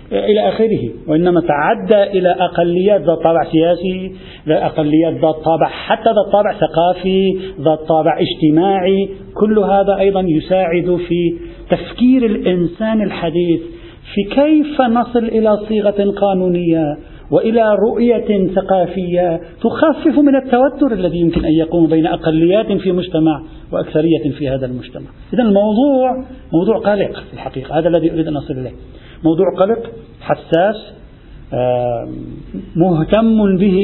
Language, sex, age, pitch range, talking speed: Arabic, male, 50-69, 160-210 Hz, 120 wpm